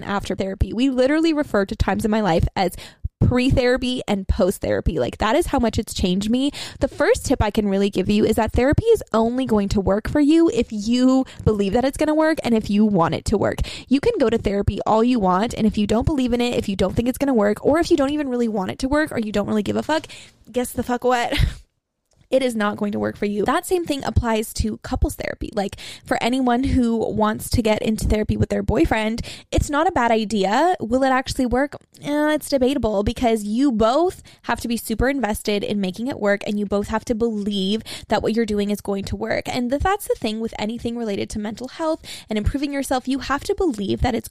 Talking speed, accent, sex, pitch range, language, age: 250 wpm, American, female, 210-265 Hz, English, 20-39